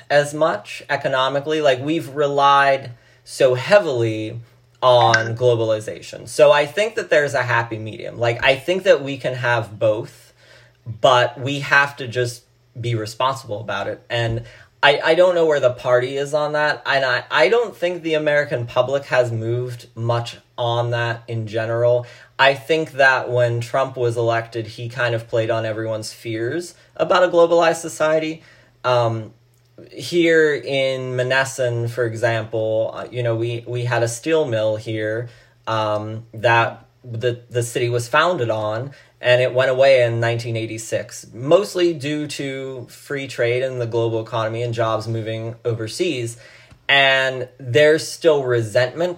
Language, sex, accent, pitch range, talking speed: English, male, American, 115-145 Hz, 155 wpm